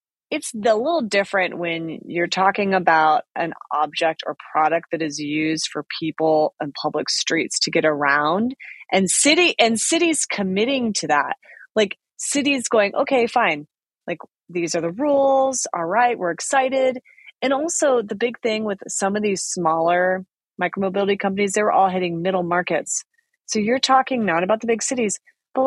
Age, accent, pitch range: 30-49, American, 165-235 Hz